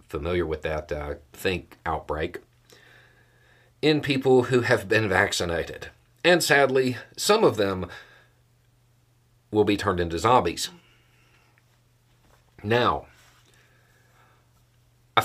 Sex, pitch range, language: male, 85-120 Hz, English